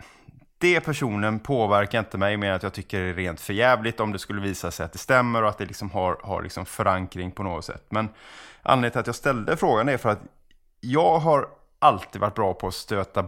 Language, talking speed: Swedish, 225 wpm